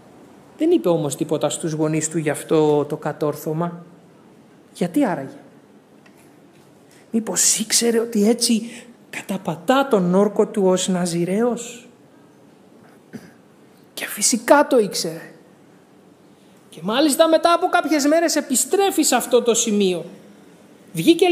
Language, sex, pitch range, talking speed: Greek, male, 175-275 Hz, 110 wpm